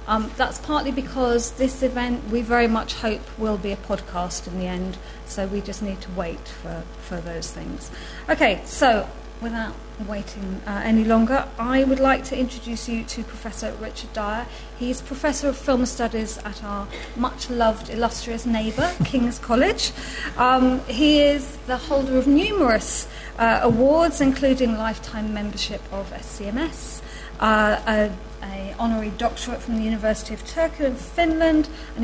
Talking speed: 155 wpm